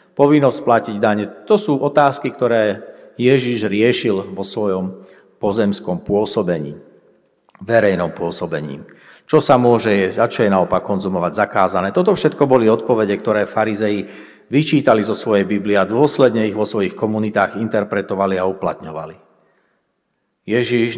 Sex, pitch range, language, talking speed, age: male, 100-130 Hz, Slovak, 130 wpm, 60-79